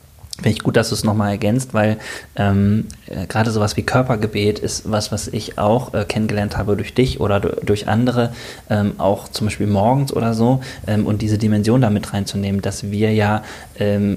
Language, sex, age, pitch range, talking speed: German, male, 20-39, 105-115 Hz, 195 wpm